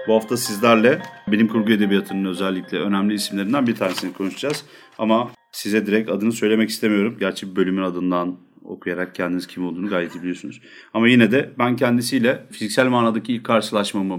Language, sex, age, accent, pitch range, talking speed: Turkish, male, 40-59, native, 95-115 Hz, 160 wpm